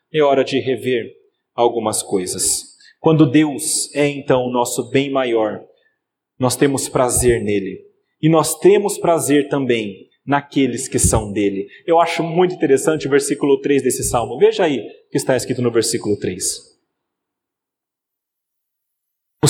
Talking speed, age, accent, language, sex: 140 wpm, 40-59, Brazilian, Portuguese, male